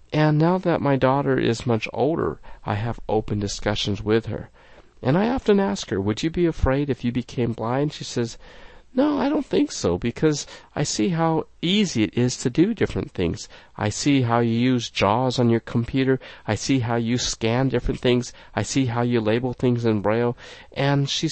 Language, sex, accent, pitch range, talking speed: English, male, American, 110-155 Hz, 200 wpm